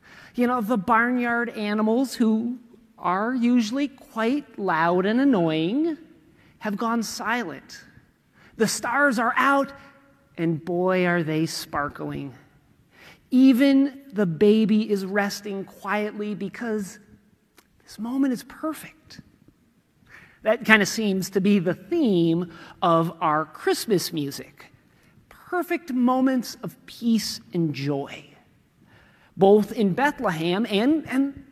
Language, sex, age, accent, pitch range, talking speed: English, male, 40-59, American, 190-260 Hz, 110 wpm